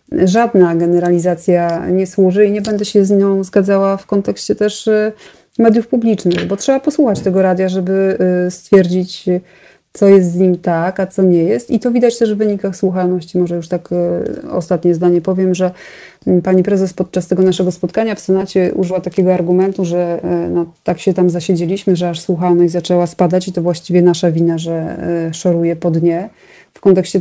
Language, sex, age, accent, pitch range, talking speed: Polish, female, 30-49, native, 175-200 Hz, 170 wpm